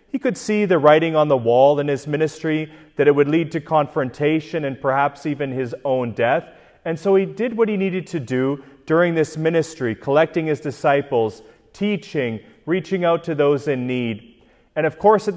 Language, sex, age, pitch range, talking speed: English, male, 30-49, 140-180 Hz, 190 wpm